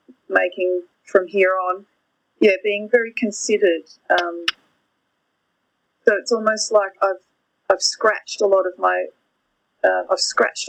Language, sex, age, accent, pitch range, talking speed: English, female, 30-49, Australian, 180-220 Hz, 130 wpm